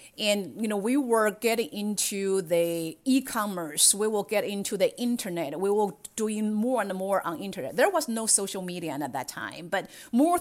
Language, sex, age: English, female, 30-49